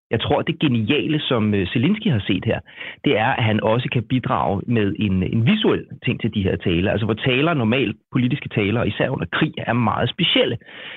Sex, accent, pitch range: male, native, 110-140 Hz